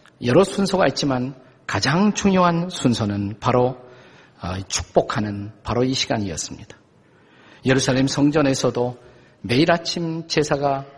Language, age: Korean, 50-69